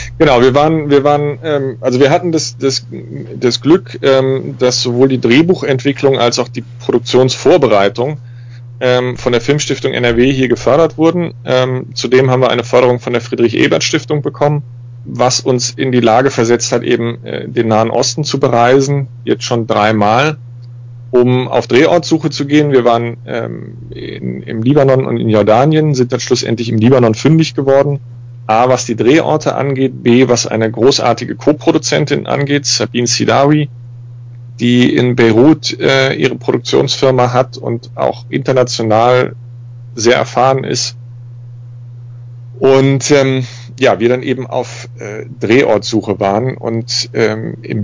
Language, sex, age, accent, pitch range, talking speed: German, male, 30-49, German, 120-135 Hz, 140 wpm